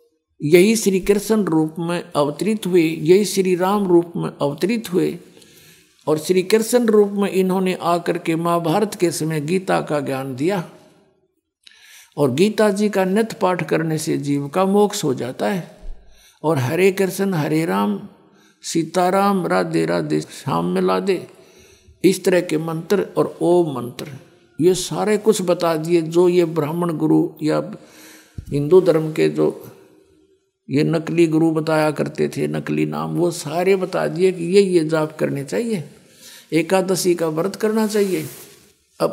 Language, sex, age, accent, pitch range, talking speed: Hindi, male, 60-79, native, 155-195 Hz, 150 wpm